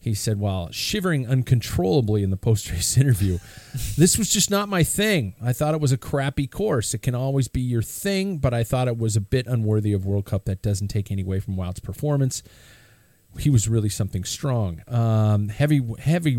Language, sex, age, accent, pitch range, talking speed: English, male, 40-59, American, 105-135 Hz, 200 wpm